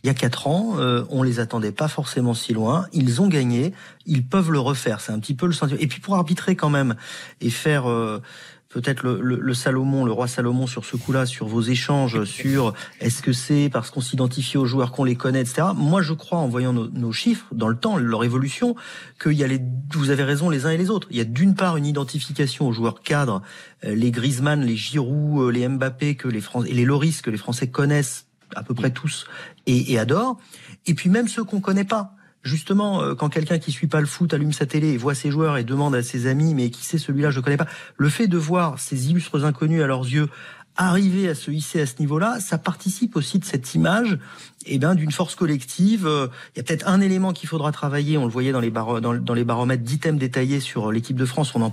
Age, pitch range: 40-59, 125-160 Hz